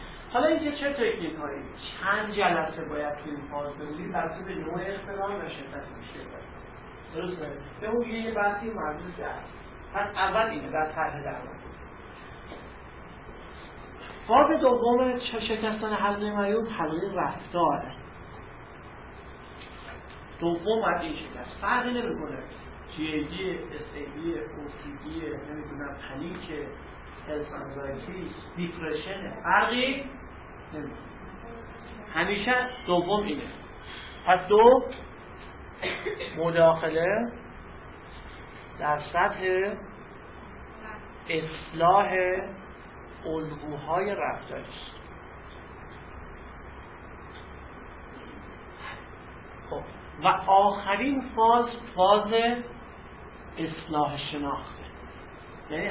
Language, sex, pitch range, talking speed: Persian, male, 145-210 Hz, 70 wpm